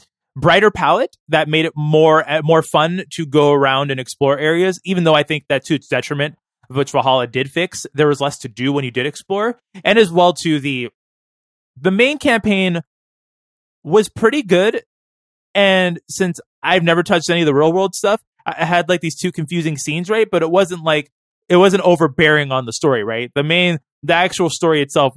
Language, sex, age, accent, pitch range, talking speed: English, male, 20-39, American, 130-165 Hz, 195 wpm